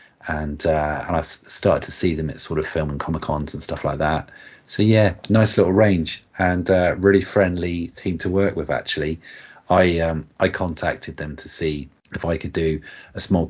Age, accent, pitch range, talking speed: 30-49, British, 75-90 Hz, 205 wpm